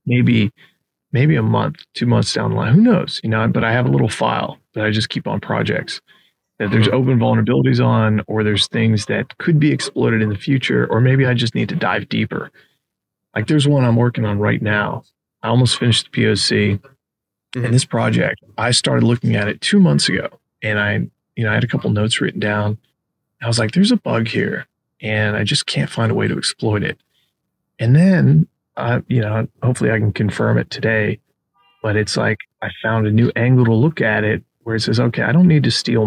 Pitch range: 110-135 Hz